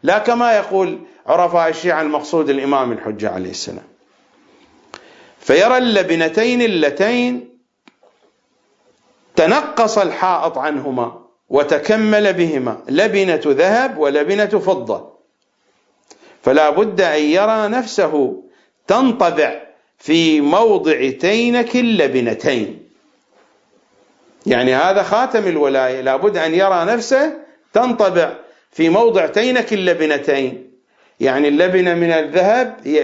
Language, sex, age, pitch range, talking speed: English, male, 50-69, 150-225 Hz, 90 wpm